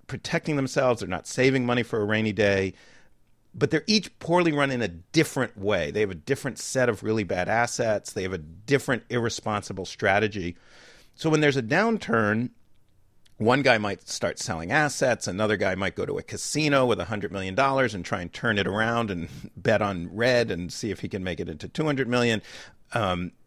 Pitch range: 105-140 Hz